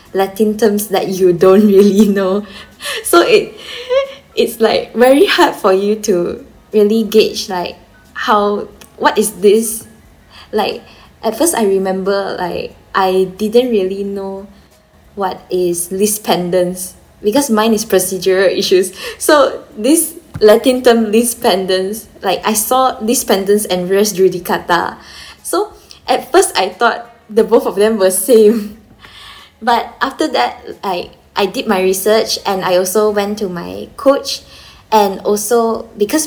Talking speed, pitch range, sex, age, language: 140 wpm, 190-225 Hz, female, 10-29, Vietnamese